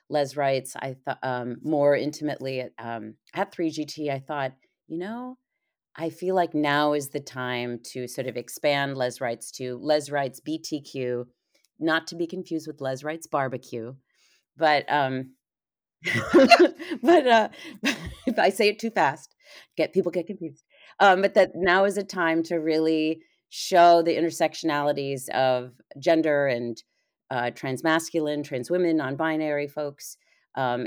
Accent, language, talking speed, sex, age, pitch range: American, English, 150 wpm, female, 40-59, 130-165 Hz